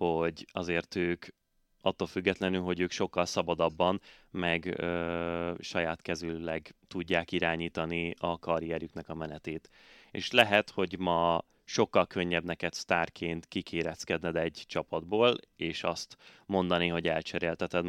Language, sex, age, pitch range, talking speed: Hungarian, male, 30-49, 85-90 Hz, 115 wpm